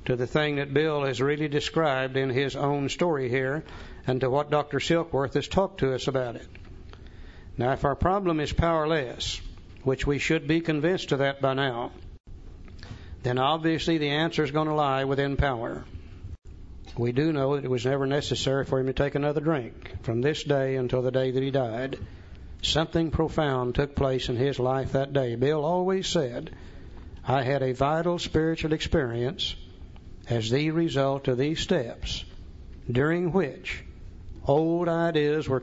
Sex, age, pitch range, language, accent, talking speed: male, 60-79, 115-150 Hz, English, American, 170 wpm